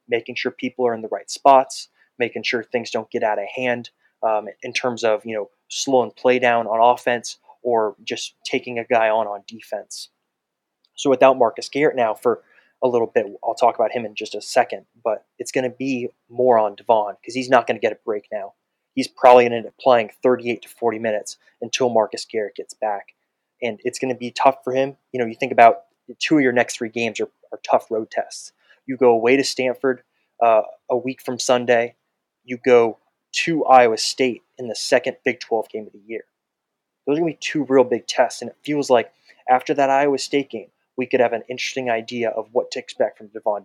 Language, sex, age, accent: English, male, 20-39, American